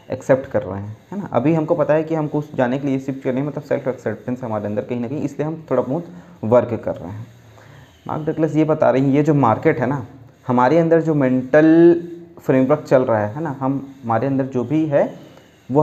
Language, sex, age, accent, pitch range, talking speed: Hindi, male, 20-39, native, 115-150 Hz, 240 wpm